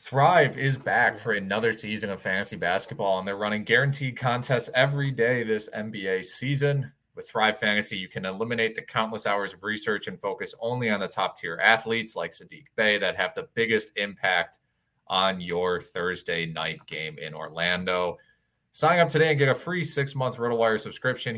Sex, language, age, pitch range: male, English, 20-39, 95-125 Hz